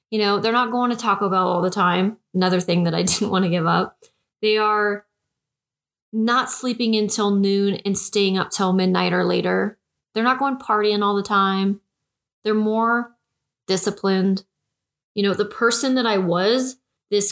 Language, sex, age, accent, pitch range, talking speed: English, female, 20-39, American, 190-215 Hz, 175 wpm